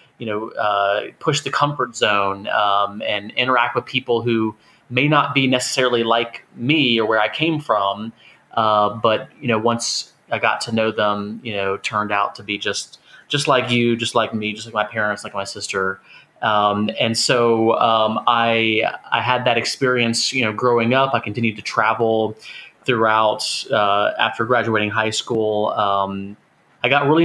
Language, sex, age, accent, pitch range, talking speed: English, male, 30-49, American, 105-125 Hz, 180 wpm